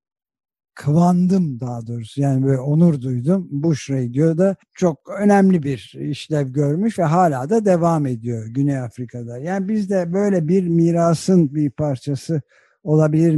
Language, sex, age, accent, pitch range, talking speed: Turkish, male, 60-79, native, 140-175 Hz, 135 wpm